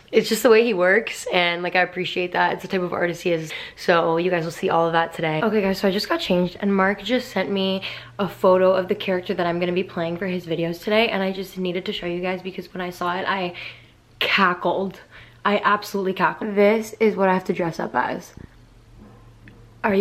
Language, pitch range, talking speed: English, 180-210 Hz, 245 wpm